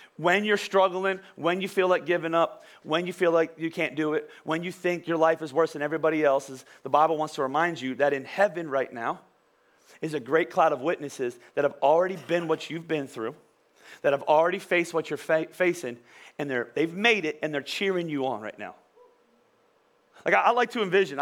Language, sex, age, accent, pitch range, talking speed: English, male, 30-49, American, 165-225 Hz, 220 wpm